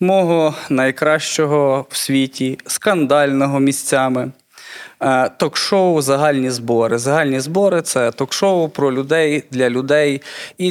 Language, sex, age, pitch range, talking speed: Ukrainian, male, 20-39, 125-150 Hz, 100 wpm